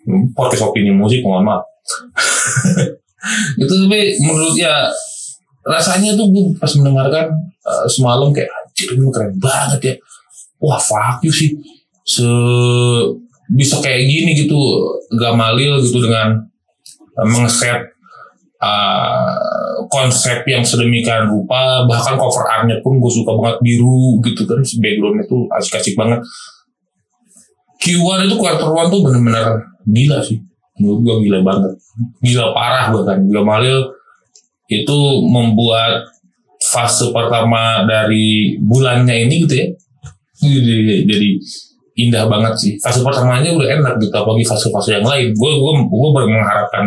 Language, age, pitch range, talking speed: Indonesian, 20-39, 115-160 Hz, 125 wpm